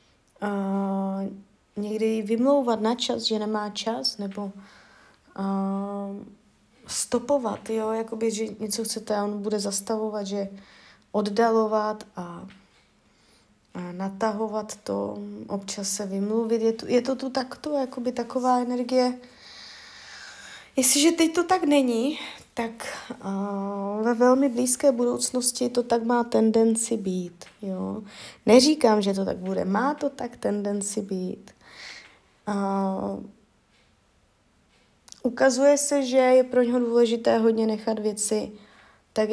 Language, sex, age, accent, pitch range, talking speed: Czech, female, 20-39, native, 200-245 Hz, 115 wpm